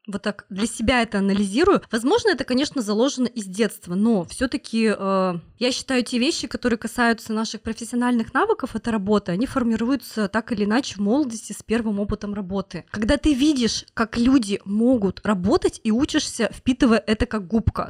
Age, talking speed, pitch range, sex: 20-39, 170 wpm, 215-275 Hz, female